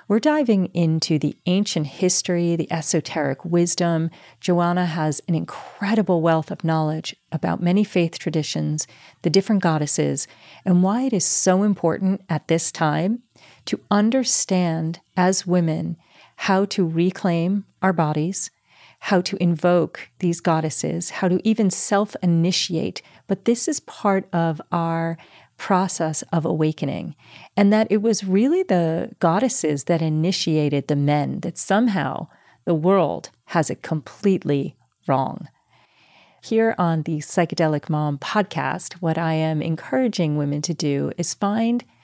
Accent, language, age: American, English, 40-59